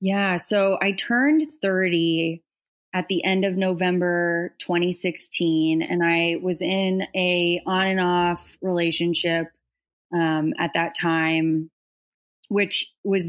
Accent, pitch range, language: American, 165-190 Hz, English